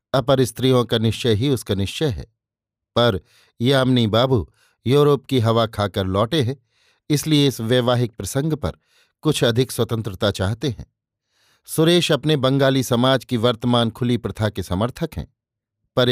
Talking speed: 145 wpm